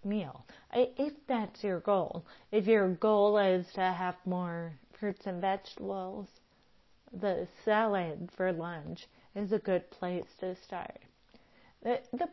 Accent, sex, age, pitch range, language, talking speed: American, female, 40-59, 190-245 Hz, English, 130 wpm